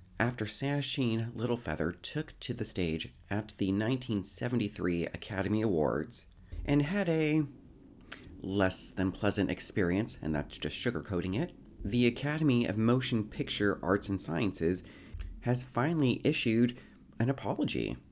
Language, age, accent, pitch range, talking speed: English, 30-49, American, 90-130 Hz, 125 wpm